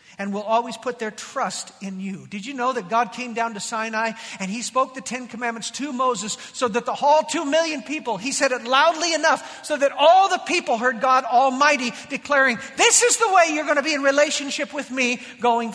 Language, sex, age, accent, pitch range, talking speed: English, male, 50-69, American, 230-295 Hz, 225 wpm